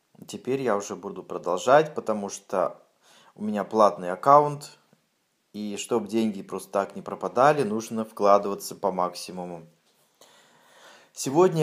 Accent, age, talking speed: native, 20-39, 120 wpm